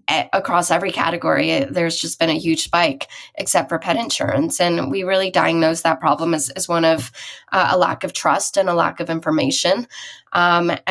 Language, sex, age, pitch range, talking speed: English, female, 10-29, 160-180 Hz, 195 wpm